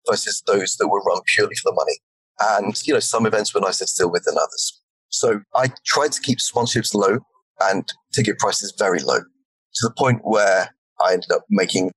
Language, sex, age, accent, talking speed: English, male, 20-39, British, 200 wpm